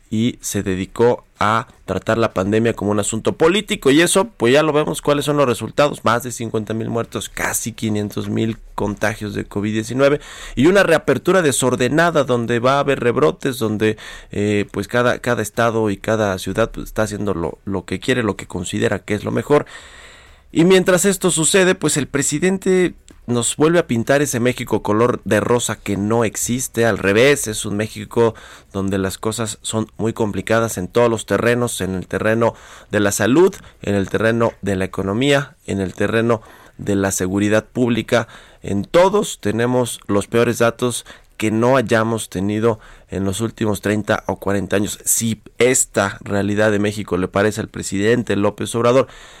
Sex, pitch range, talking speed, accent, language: male, 100-125 Hz, 175 wpm, Mexican, Spanish